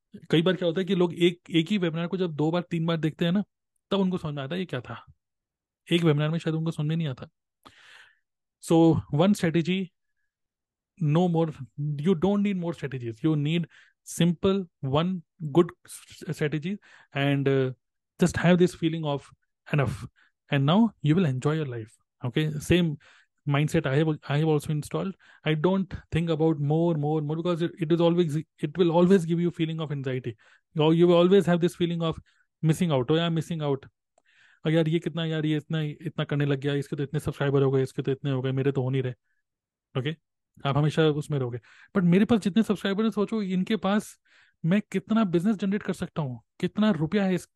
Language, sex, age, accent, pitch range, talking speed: Hindi, male, 30-49, native, 150-180 Hz, 130 wpm